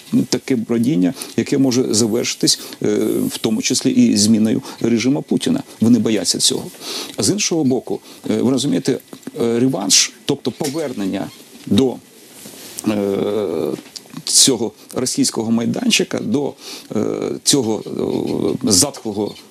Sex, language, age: male, Ukrainian, 40-59